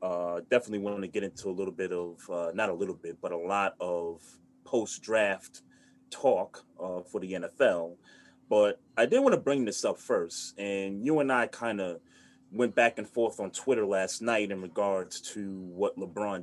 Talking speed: 195 wpm